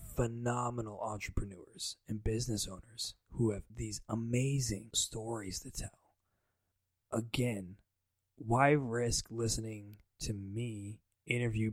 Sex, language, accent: male, English, American